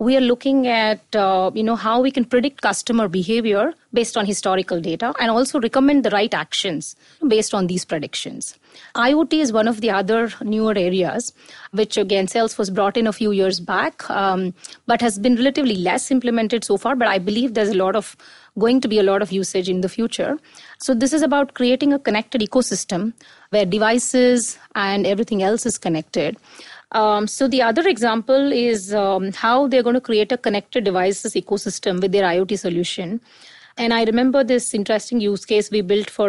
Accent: Indian